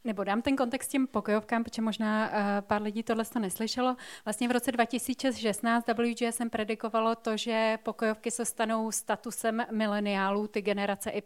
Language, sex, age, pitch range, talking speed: Czech, female, 30-49, 210-230 Hz, 155 wpm